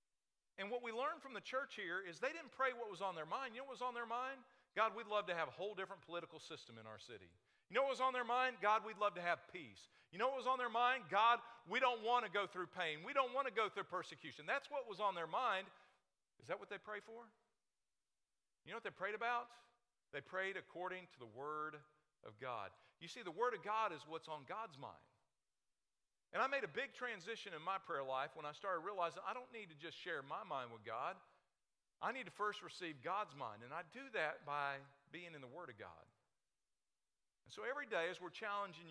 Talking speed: 245 wpm